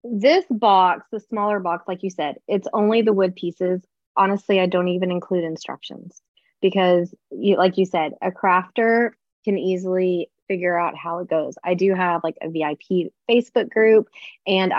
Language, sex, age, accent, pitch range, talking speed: English, female, 20-39, American, 175-215 Hz, 170 wpm